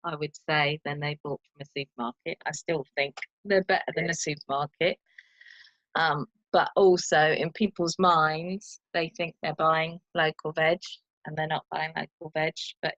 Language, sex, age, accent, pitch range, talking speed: English, female, 20-39, British, 150-180 Hz, 165 wpm